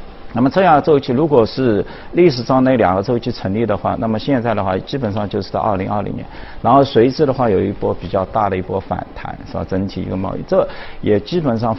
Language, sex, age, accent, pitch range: Chinese, male, 50-69, native, 95-115 Hz